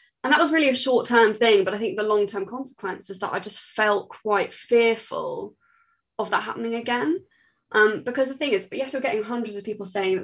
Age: 20-39